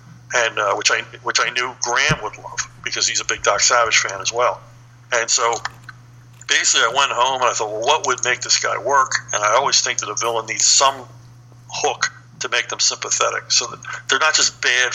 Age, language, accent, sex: 50-69, English, American, male